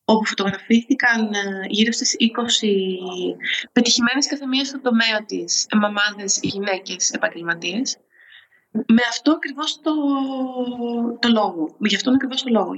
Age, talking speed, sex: 20-39, 115 wpm, female